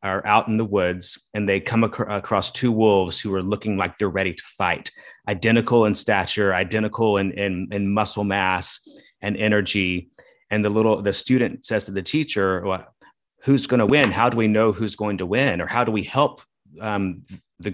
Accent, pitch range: American, 95-110 Hz